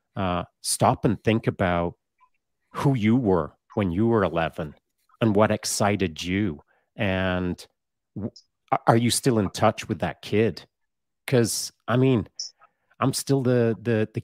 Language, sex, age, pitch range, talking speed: English, male, 40-59, 90-115 Hz, 145 wpm